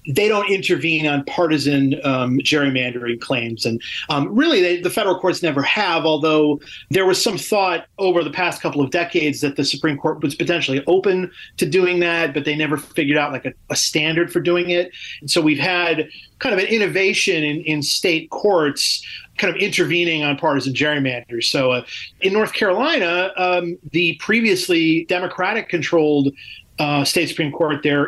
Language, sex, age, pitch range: English, male, 30-49, 135-175 Hz